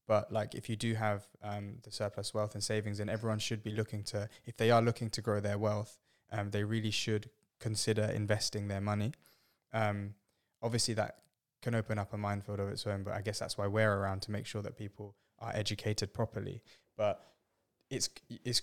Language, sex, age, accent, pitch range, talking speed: English, male, 20-39, British, 100-115 Hz, 205 wpm